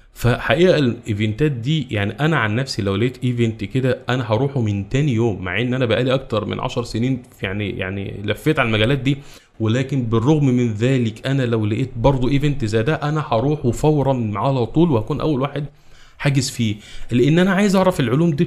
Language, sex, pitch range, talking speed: Arabic, male, 110-140 Hz, 185 wpm